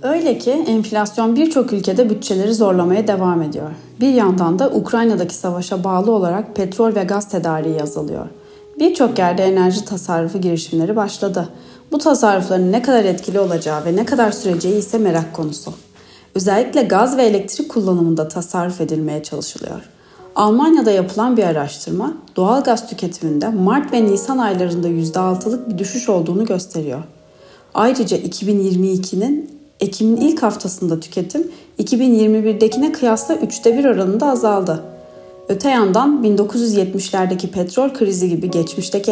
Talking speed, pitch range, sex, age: 125 wpm, 175-225 Hz, female, 30-49